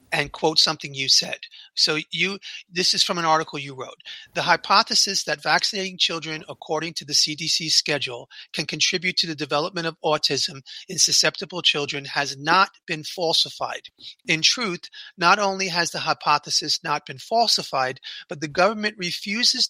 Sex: male